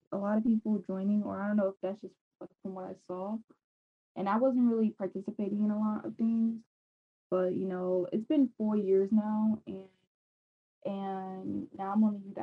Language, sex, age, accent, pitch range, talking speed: English, female, 10-29, American, 190-210 Hz, 200 wpm